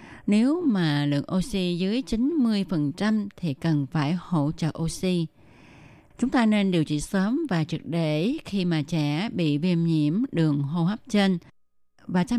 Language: Vietnamese